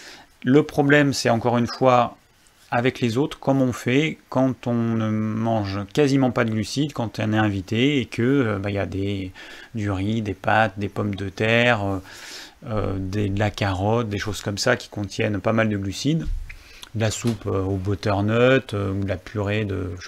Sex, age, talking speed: male, 30-49, 195 wpm